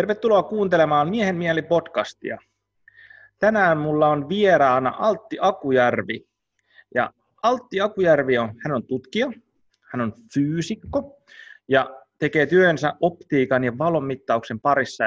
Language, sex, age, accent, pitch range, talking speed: Finnish, male, 30-49, native, 120-165 Hz, 105 wpm